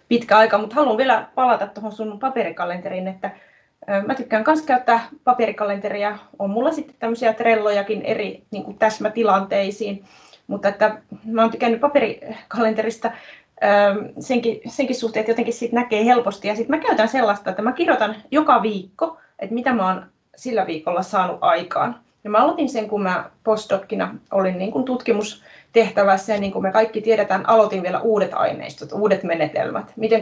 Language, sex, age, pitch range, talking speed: Finnish, female, 20-39, 200-250 Hz, 155 wpm